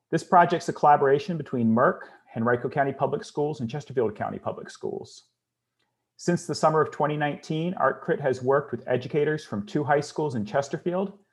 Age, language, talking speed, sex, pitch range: 40-59, English, 170 wpm, male, 120-150 Hz